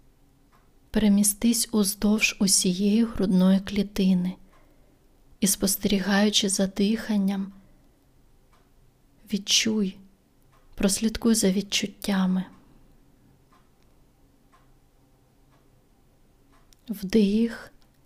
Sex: female